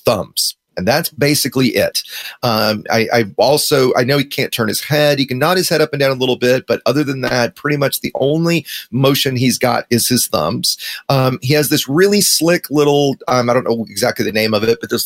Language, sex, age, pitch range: English, male, 30-49, 120-150 Hz